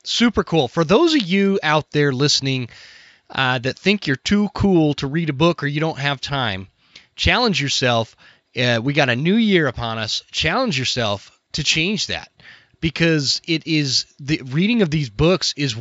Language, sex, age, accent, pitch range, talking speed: English, male, 30-49, American, 120-160 Hz, 180 wpm